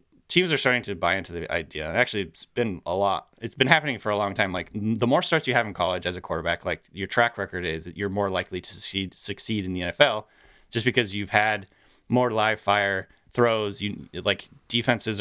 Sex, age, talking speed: male, 30-49, 225 wpm